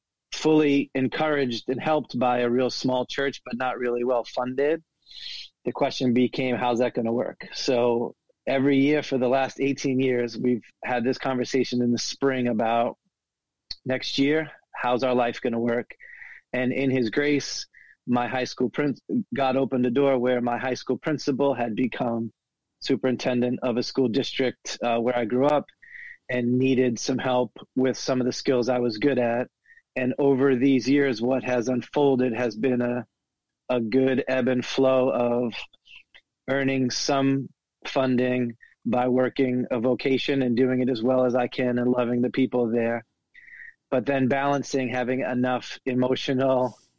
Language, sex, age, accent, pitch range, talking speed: English, male, 30-49, American, 125-135 Hz, 165 wpm